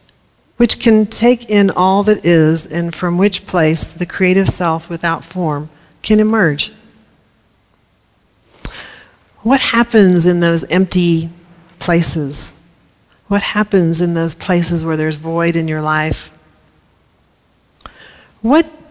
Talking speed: 115 wpm